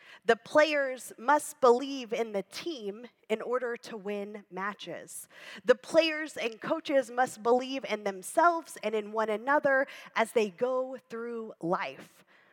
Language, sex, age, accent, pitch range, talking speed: English, female, 20-39, American, 200-255 Hz, 140 wpm